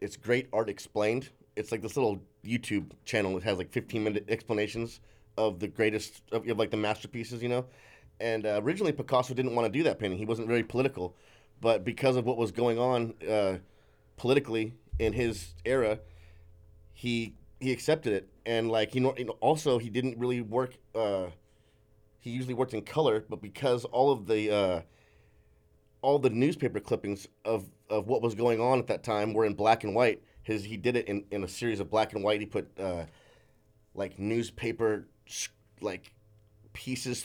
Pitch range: 105-125 Hz